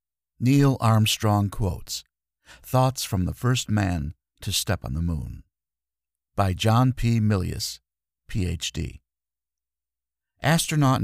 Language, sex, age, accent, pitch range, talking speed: English, male, 50-69, American, 95-130 Hz, 105 wpm